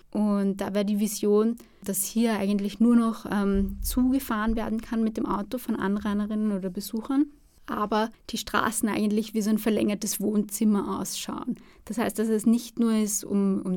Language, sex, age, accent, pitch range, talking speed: German, female, 20-39, German, 200-230 Hz, 175 wpm